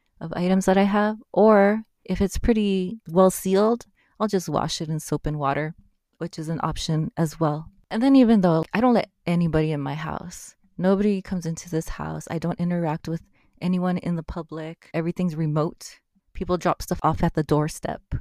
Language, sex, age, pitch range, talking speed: English, female, 20-39, 155-190 Hz, 190 wpm